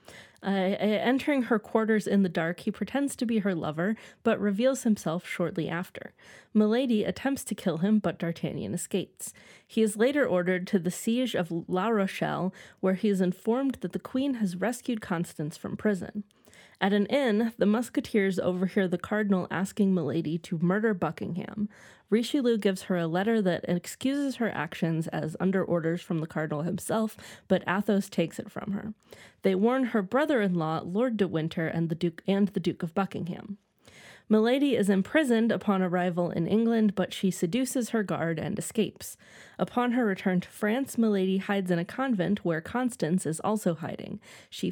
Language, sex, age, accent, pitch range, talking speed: English, female, 20-39, American, 180-225 Hz, 170 wpm